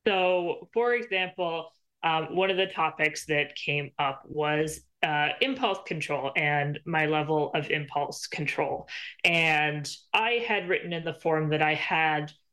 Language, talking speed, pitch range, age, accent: English, 150 wpm, 150-190 Hz, 20-39, American